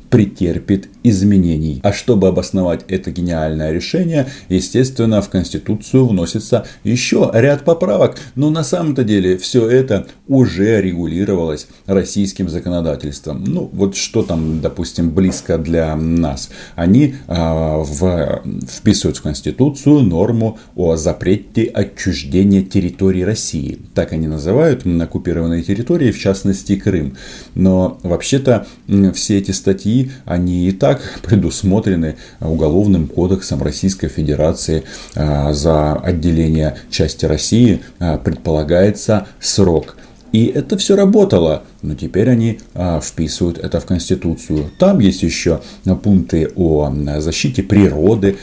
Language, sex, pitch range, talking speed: Russian, male, 80-105 Hz, 110 wpm